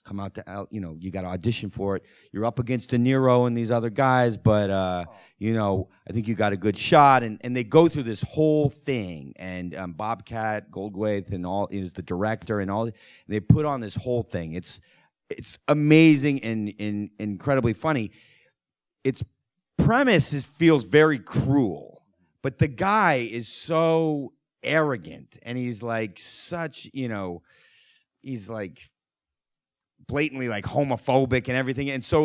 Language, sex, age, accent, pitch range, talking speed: English, male, 30-49, American, 105-145 Hz, 170 wpm